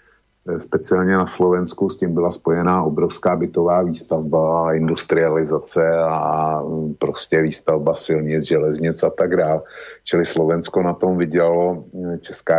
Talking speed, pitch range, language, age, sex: 120 wpm, 80-95 Hz, Slovak, 50-69, male